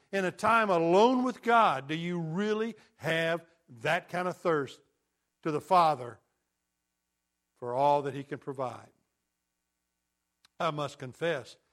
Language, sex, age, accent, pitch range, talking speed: English, male, 60-79, American, 130-180 Hz, 135 wpm